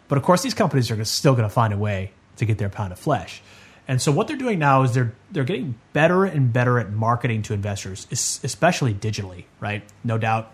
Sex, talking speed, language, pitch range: male, 230 wpm, English, 105-140 Hz